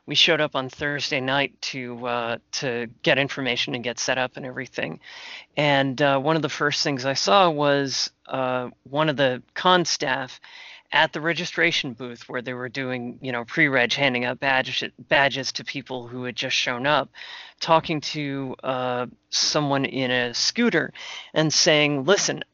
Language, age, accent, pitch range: English, 30-49, American, 130-155 Hz